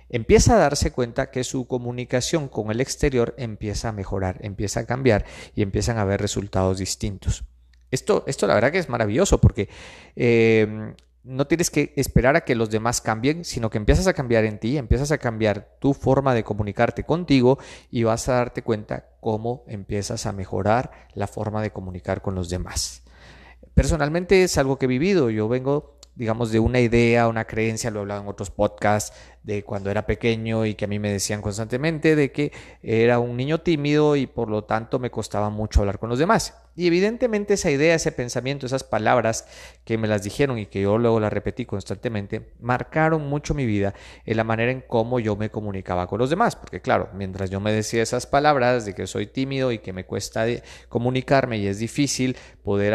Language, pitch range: Spanish, 105-130 Hz